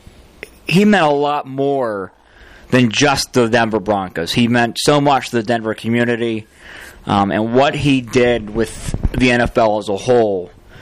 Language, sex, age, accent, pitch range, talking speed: English, male, 20-39, American, 100-125 Hz, 160 wpm